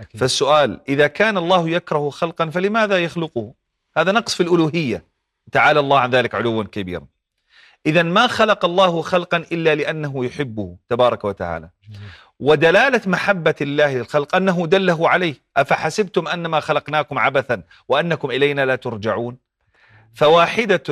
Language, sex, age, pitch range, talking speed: Arabic, male, 40-59, 130-180 Hz, 125 wpm